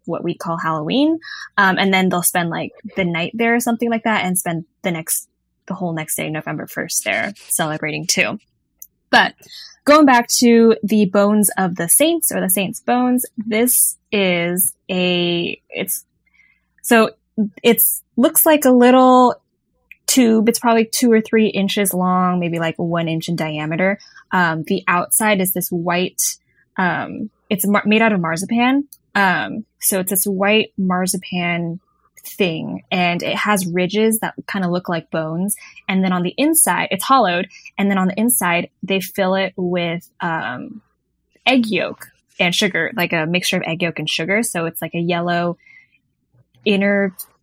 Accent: American